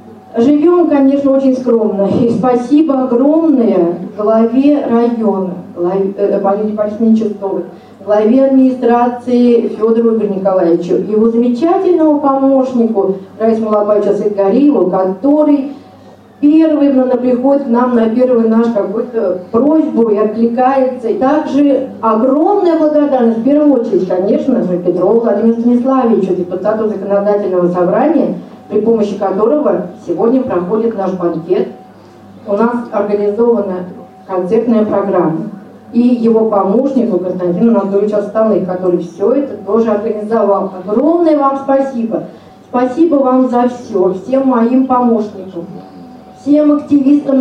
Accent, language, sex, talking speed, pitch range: native, Russian, female, 110 wpm, 200-260 Hz